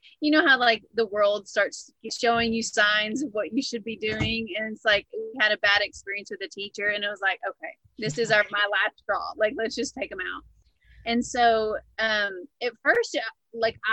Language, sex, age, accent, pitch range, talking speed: English, female, 30-49, American, 210-285 Hz, 215 wpm